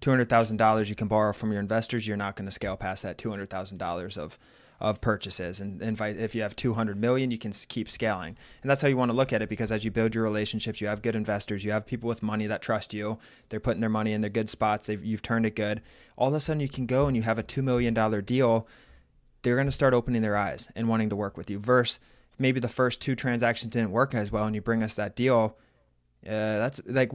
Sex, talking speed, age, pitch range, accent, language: male, 260 wpm, 20-39, 105-120 Hz, American, English